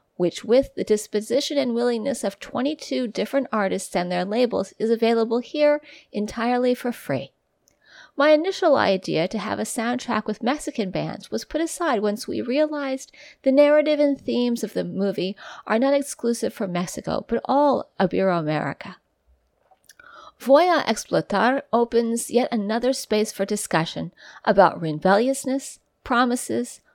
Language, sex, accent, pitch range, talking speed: English, female, American, 210-280 Hz, 140 wpm